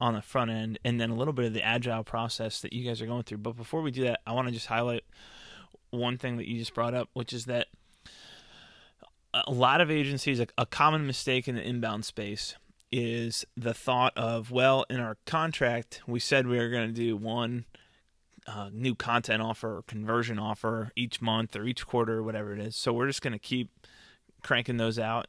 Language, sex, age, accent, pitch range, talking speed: English, male, 20-39, American, 110-125 Hz, 215 wpm